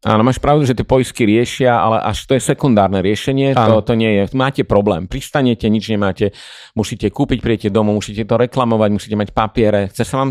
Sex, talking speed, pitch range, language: male, 205 wpm, 90-110 Hz, Slovak